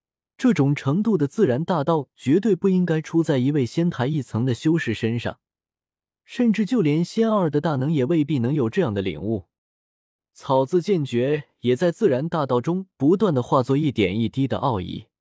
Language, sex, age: Chinese, male, 20-39